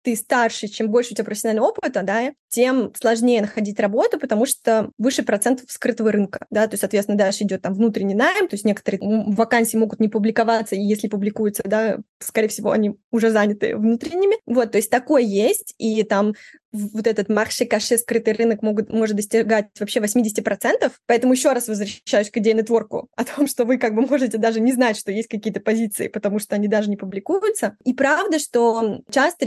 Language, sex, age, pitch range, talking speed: Russian, female, 20-39, 215-250 Hz, 195 wpm